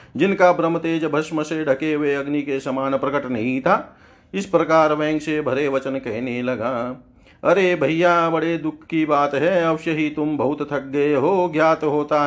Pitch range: 130-155 Hz